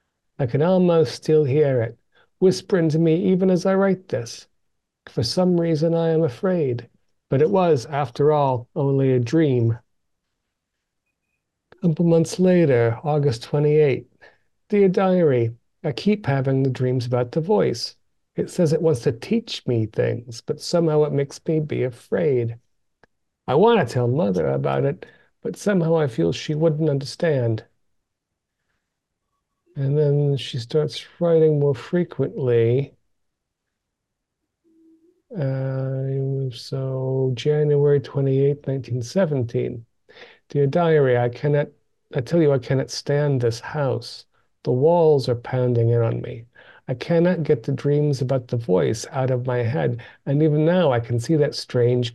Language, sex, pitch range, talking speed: English, male, 125-165 Hz, 145 wpm